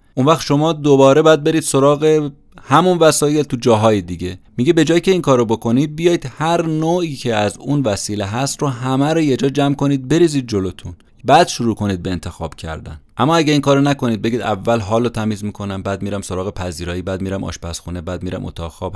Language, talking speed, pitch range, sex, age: Persian, 200 wpm, 95-140 Hz, male, 30-49